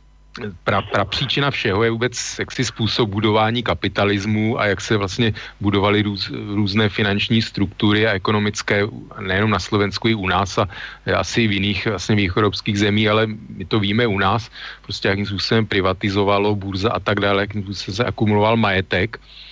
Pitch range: 100-110 Hz